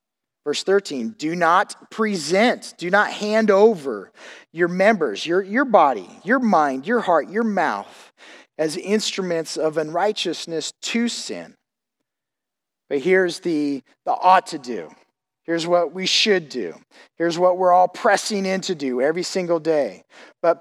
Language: English